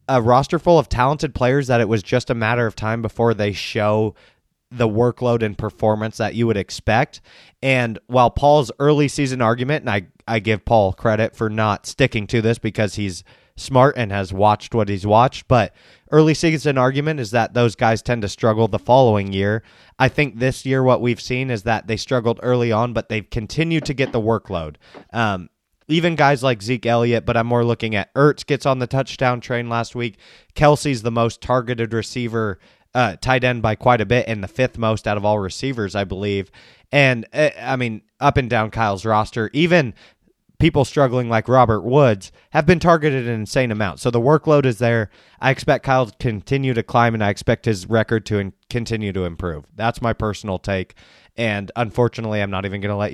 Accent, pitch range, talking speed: American, 110-130 Hz, 205 wpm